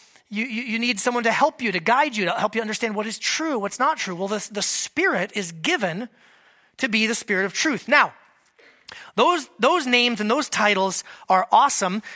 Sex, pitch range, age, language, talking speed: male, 200-270 Hz, 30-49, English, 205 wpm